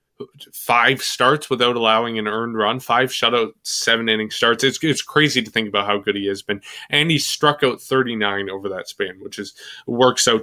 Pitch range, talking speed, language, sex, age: 105-125 Hz, 200 wpm, English, male, 20-39